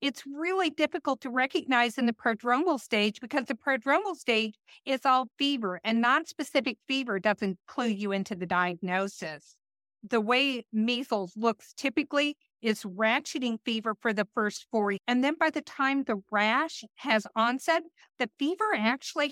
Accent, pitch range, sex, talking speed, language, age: American, 210-270 Hz, female, 155 wpm, English, 50-69